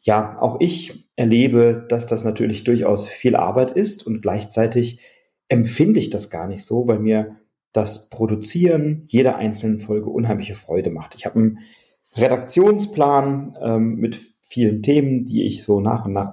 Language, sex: German, male